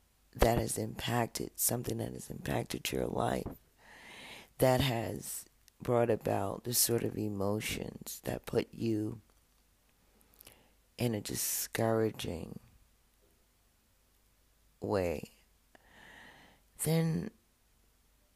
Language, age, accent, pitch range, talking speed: English, 50-69, American, 85-115 Hz, 80 wpm